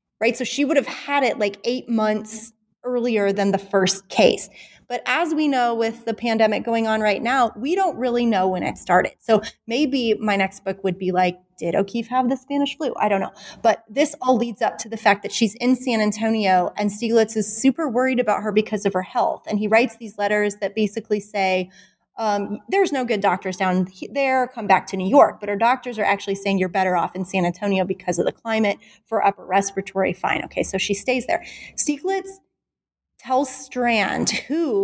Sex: female